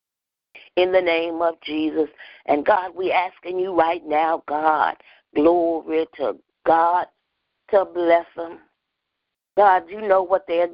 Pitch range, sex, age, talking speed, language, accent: 165-185 Hz, female, 50-69, 135 wpm, English, American